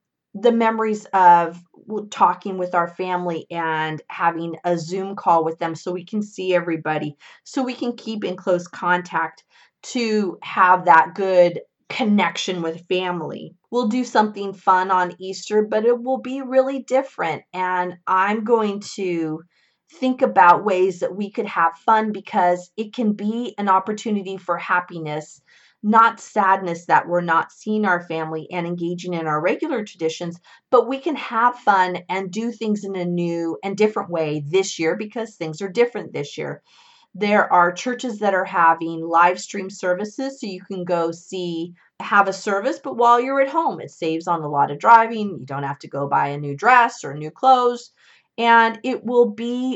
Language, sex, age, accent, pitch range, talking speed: English, female, 30-49, American, 170-220 Hz, 175 wpm